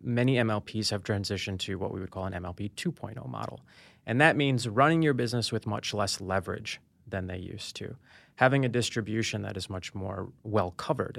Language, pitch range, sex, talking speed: English, 95-115 Hz, male, 195 wpm